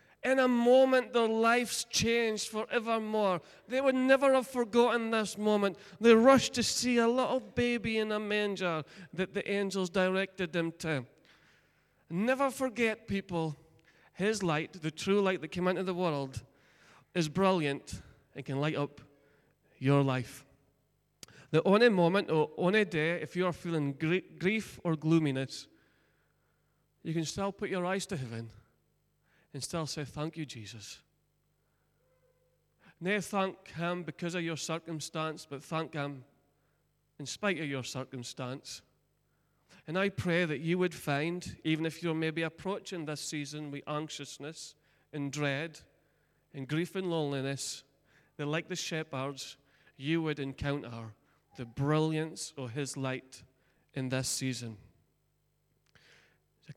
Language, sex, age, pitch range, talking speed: English, male, 30-49, 140-190 Hz, 140 wpm